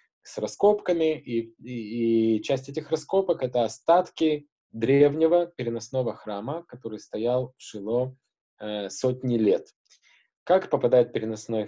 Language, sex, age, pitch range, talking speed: Russian, male, 20-39, 110-155 Hz, 120 wpm